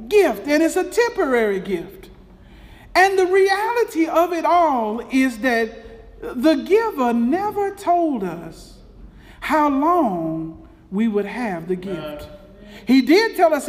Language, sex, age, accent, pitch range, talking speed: English, male, 50-69, American, 225-340 Hz, 130 wpm